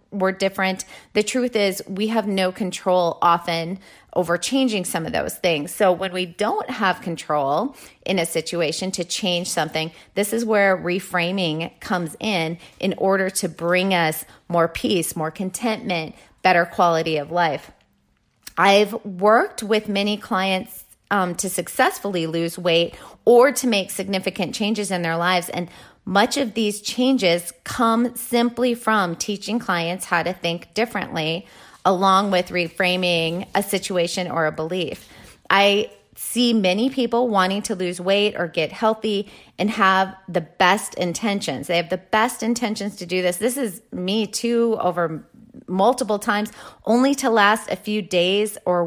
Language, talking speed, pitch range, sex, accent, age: English, 155 wpm, 175-215 Hz, female, American, 30-49